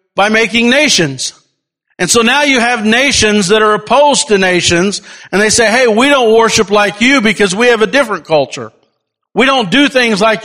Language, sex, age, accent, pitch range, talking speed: English, male, 50-69, American, 175-230 Hz, 195 wpm